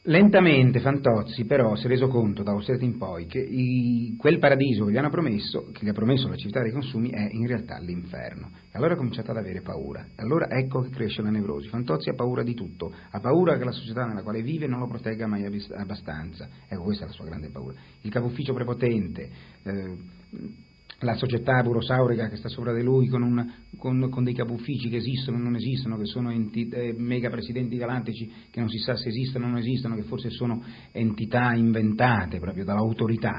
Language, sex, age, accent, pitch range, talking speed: Italian, male, 40-59, native, 110-130 Hz, 210 wpm